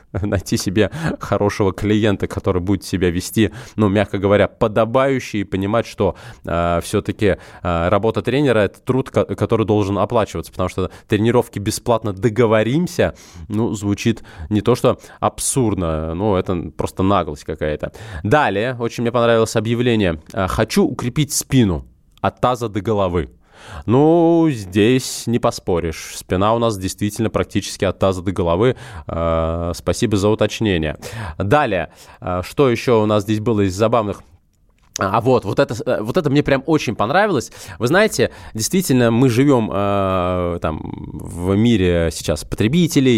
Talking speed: 135 wpm